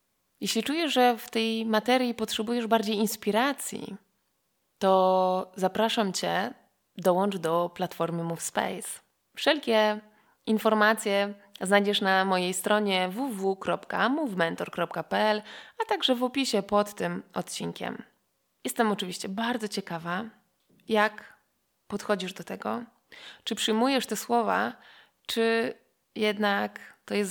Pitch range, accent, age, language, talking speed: 195-235 Hz, native, 20-39, Polish, 100 wpm